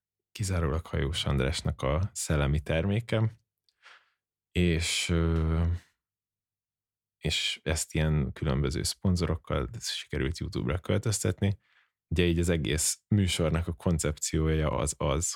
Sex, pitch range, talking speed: male, 75-95 Hz, 100 wpm